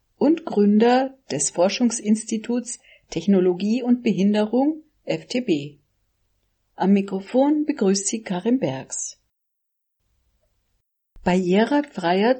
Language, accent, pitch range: German, German, 175-245 Hz